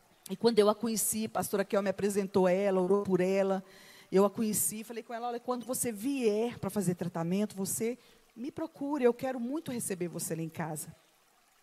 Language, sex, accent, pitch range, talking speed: Portuguese, female, Brazilian, 190-240 Hz, 195 wpm